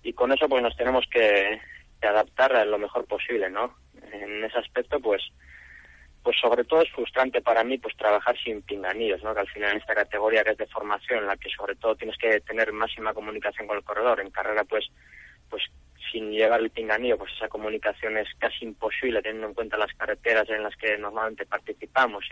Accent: Spanish